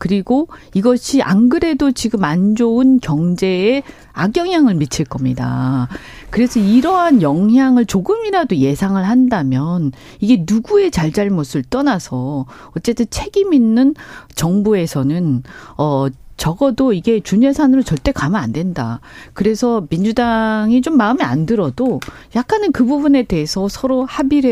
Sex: female